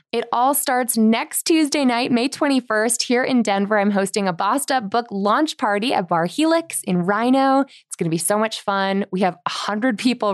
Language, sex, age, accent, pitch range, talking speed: English, female, 20-39, American, 200-265 Hz, 195 wpm